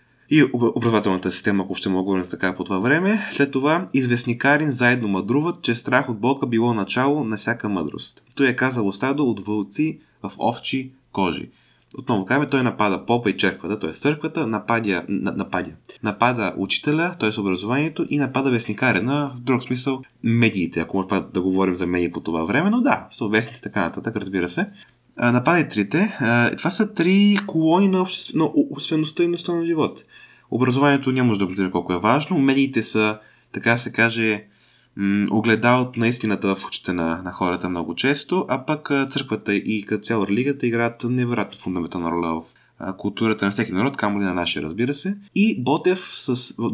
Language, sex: Bulgarian, male